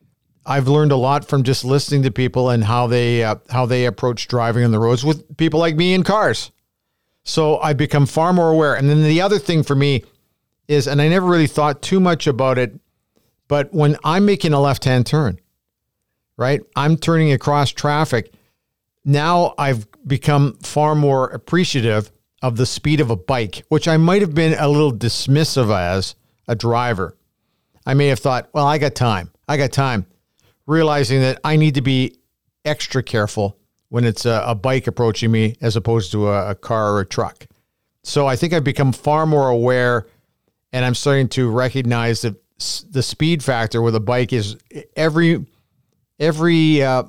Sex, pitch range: male, 120-150 Hz